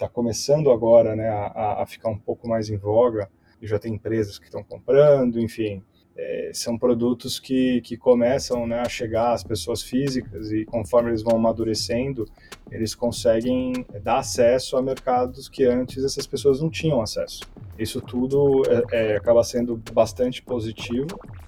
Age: 20-39